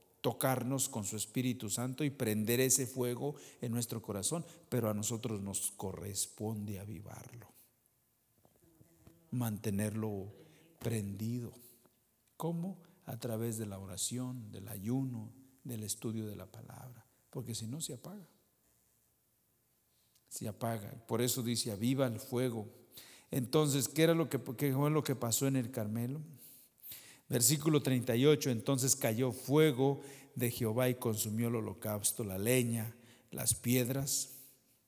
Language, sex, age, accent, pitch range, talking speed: English, male, 50-69, Mexican, 115-135 Hz, 125 wpm